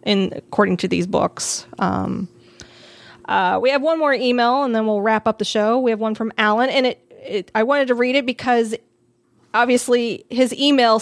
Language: English